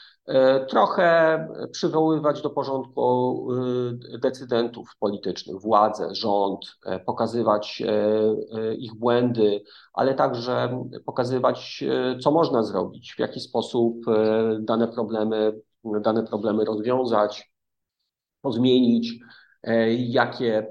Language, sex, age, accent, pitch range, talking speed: Polish, male, 40-59, native, 105-125 Hz, 80 wpm